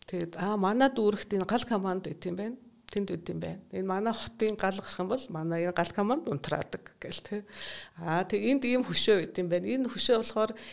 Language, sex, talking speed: English, female, 200 wpm